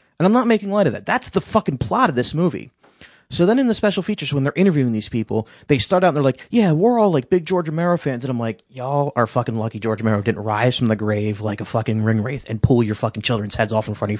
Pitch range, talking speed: 120-185 Hz, 290 wpm